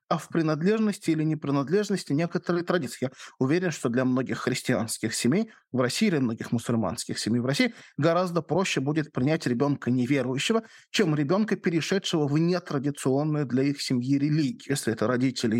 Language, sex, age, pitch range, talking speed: Russian, male, 20-39, 130-195 Hz, 155 wpm